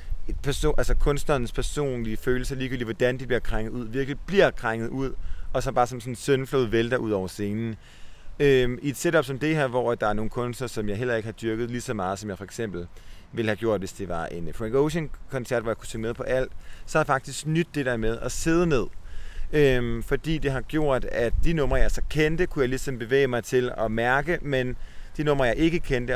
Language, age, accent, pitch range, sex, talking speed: Danish, 30-49, native, 105-135 Hz, male, 235 wpm